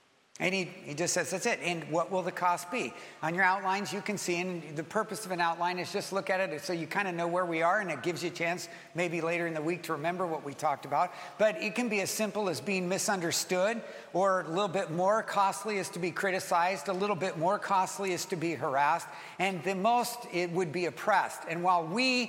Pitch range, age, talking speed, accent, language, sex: 165-200 Hz, 50-69, 250 wpm, American, English, male